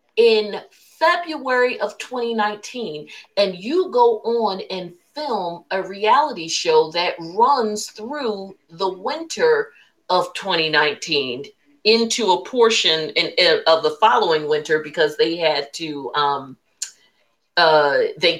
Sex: female